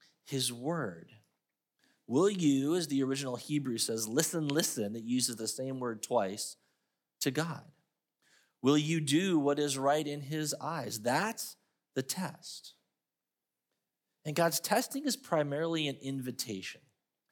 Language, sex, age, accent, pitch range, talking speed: English, male, 30-49, American, 120-165 Hz, 130 wpm